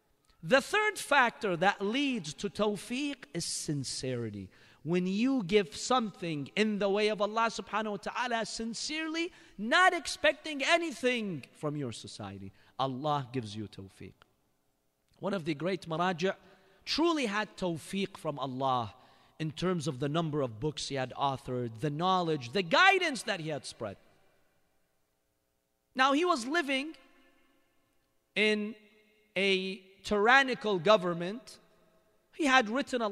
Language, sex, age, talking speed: English, male, 40-59, 130 wpm